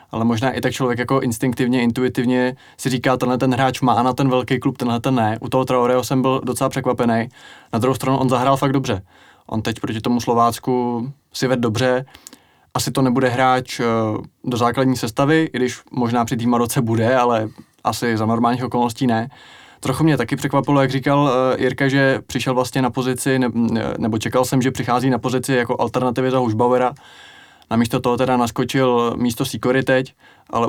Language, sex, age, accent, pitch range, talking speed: Czech, male, 20-39, native, 120-135 Hz, 185 wpm